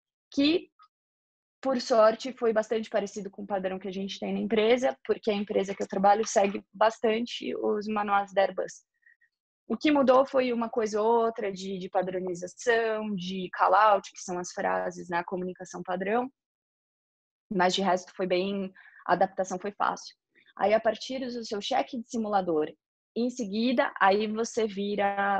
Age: 20-39